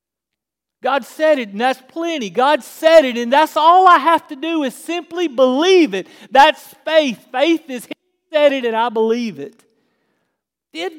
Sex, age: male, 40-59